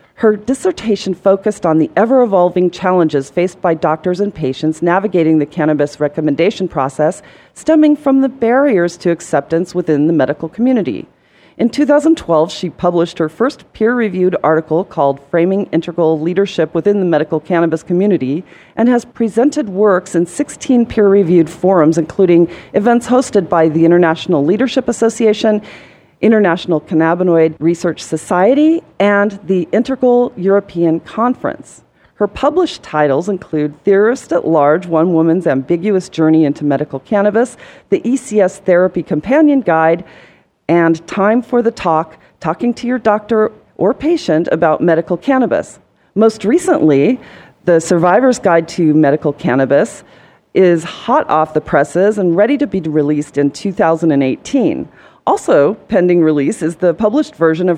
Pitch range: 160-215 Hz